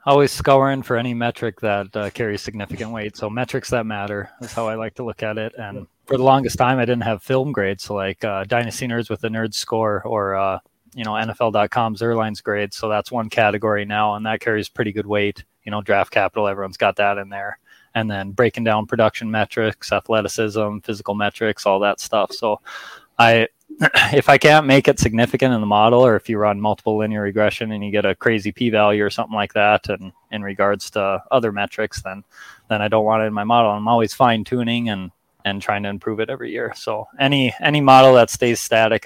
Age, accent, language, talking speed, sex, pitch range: 20-39, American, English, 220 wpm, male, 105-120 Hz